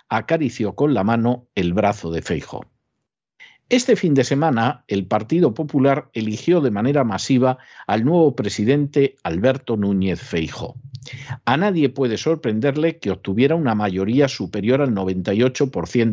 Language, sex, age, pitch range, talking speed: Spanish, male, 50-69, 110-145 Hz, 135 wpm